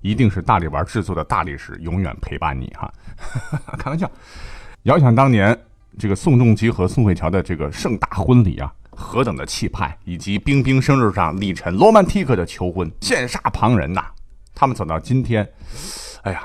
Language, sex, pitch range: Chinese, male, 85-120 Hz